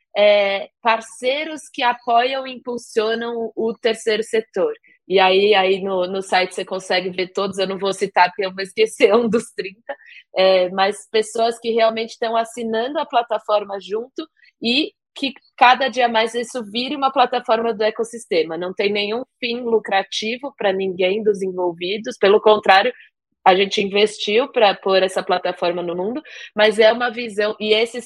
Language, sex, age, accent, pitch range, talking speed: Portuguese, female, 20-39, Brazilian, 195-245 Hz, 165 wpm